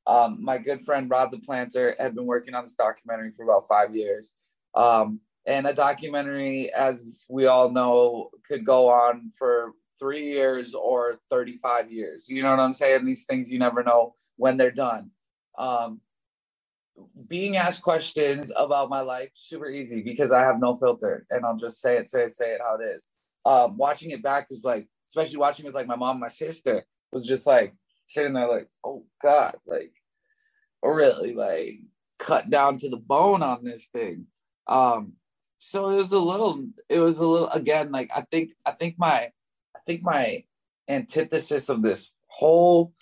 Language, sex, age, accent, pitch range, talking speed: English, male, 20-39, American, 125-170 Hz, 185 wpm